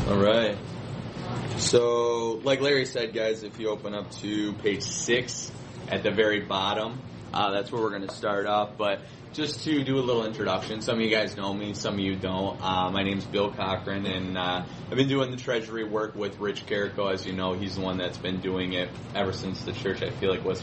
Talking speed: 220 wpm